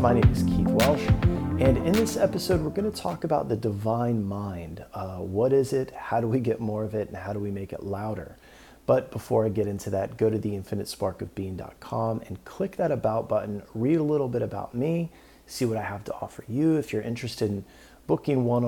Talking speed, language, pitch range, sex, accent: 220 wpm, English, 100-120 Hz, male, American